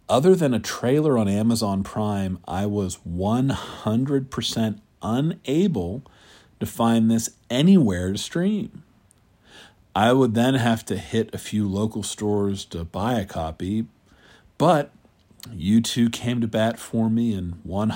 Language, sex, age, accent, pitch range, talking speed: English, male, 50-69, American, 95-120 Hz, 135 wpm